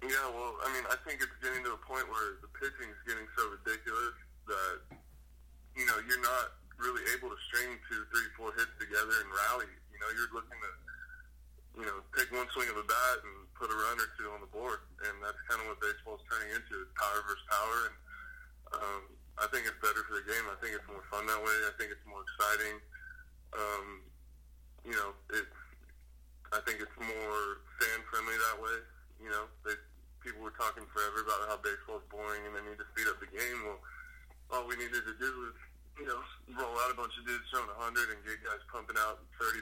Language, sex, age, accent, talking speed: English, male, 20-39, American, 220 wpm